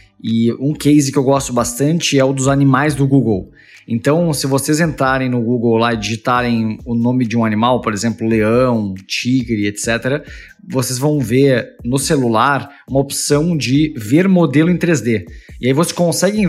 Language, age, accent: Portuguese, 20-39, Brazilian